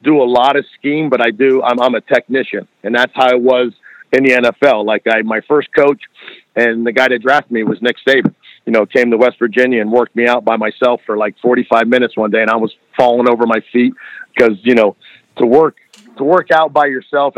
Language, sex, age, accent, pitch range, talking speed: English, male, 50-69, American, 120-140 Hz, 235 wpm